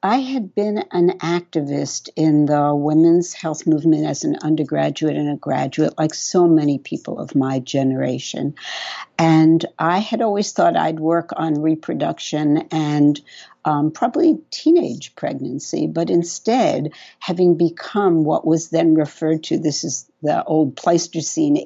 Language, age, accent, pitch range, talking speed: English, 60-79, American, 150-175 Hz, 140 wpm